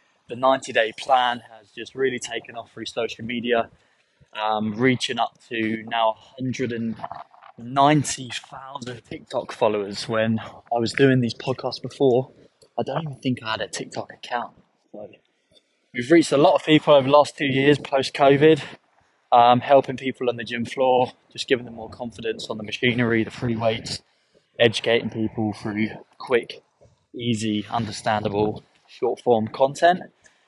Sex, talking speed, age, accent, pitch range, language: male, 150 wpm, 20-39, British, 115-140 Hz, English